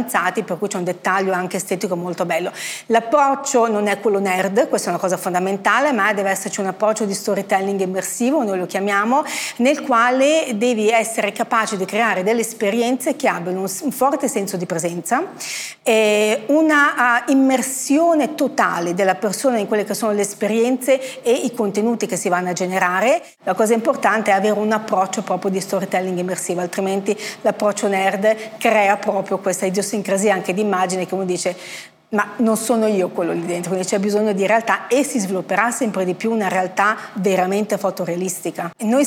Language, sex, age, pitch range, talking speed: Italian, female, 40-59, 185-230 Hz, 180 wpm